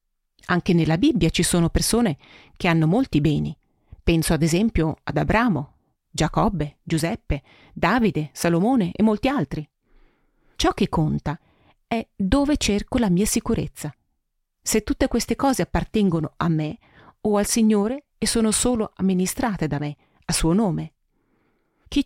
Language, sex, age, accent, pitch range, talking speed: Italian, female, 40-59, native, 160-220 Hz, 140 wpm